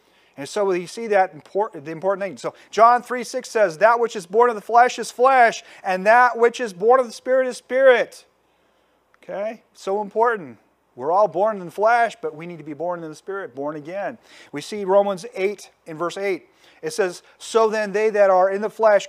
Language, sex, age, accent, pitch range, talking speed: English, male, 40-59, American, 170-225 Hz, 215 wpm